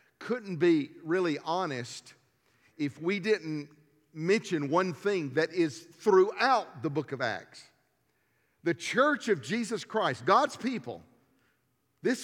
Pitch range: 145-225 Hz